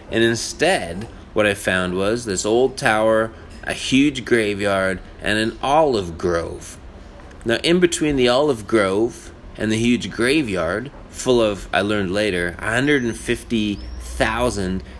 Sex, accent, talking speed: male, American, 130 wpm